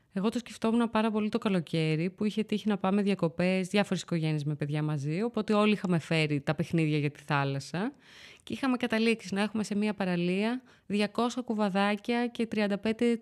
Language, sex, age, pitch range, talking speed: Greek, female, 20-39, 170-235 Hz, 175 wpm